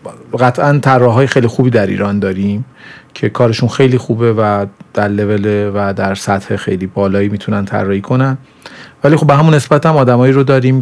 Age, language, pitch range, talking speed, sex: 40-59, Persian, 115-135 Hz, 170 wpm, male